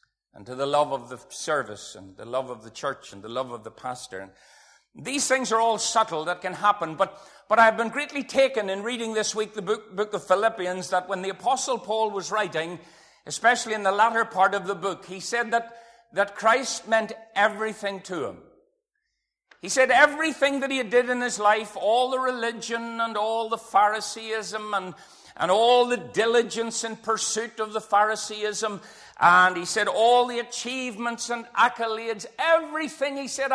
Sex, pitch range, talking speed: male, 185-235 Hz, 185 wpm